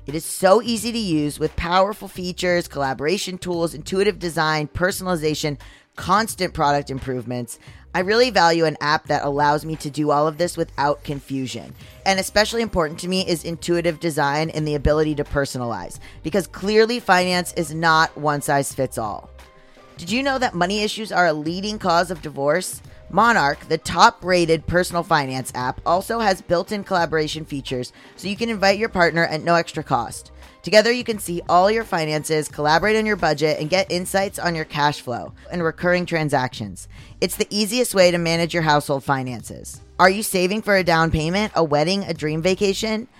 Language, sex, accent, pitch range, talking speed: English, female, American, 145-185 Hz, 180 wpm